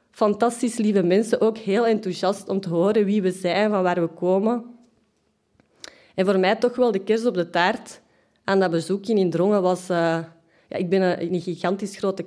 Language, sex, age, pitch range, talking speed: Dutch, female, 30-49, 185-240 Hz, 195 wpm